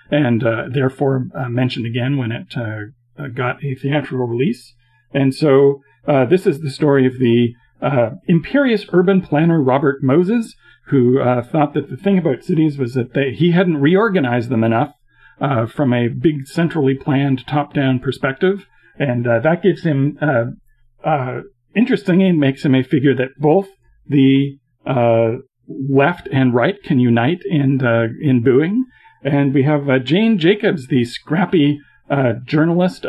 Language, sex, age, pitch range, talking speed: English, male, 40-59, 125-160 Hz, 155 wpm